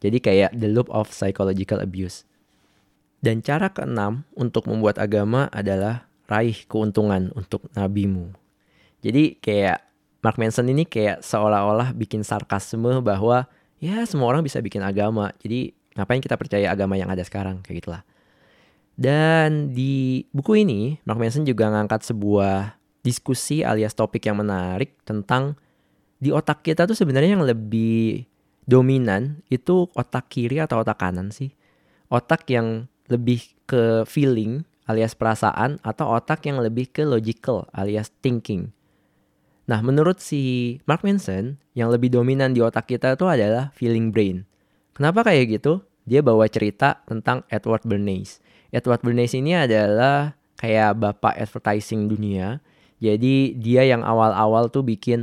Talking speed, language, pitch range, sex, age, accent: 140 wpm, Indonesian, 105-135 Hz, male, 20-39, native